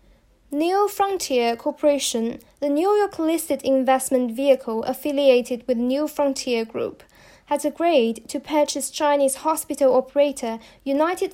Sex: female